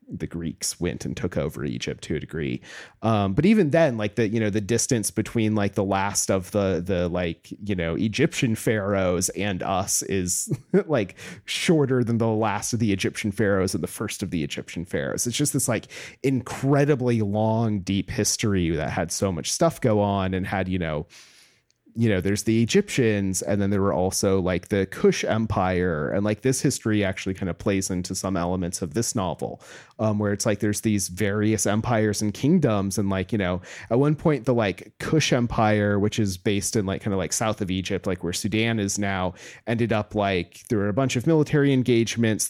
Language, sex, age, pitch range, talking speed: English, male, 30-49, 95-120 Hz, 205 wpm